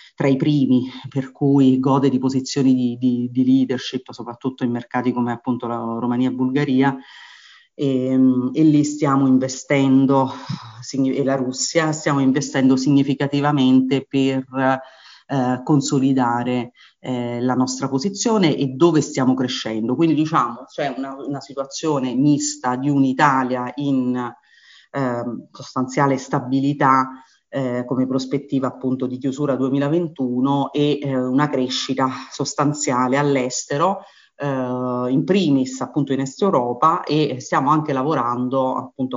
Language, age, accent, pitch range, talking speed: Italian, 30-49, native, 125-140 Hz, 120 wpm